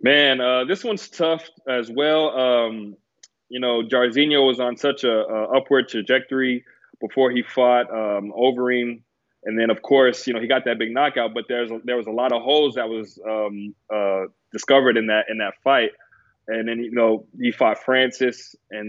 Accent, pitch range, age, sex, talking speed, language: American, 110-130 Hz, 20-39, male, 185 wpm, English